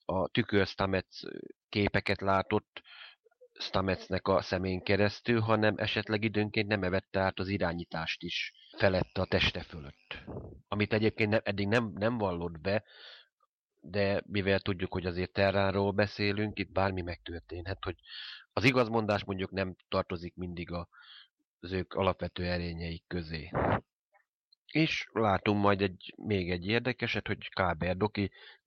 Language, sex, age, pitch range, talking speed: Hungarian, male, 30-49, 90-105 Hz, 125 wpm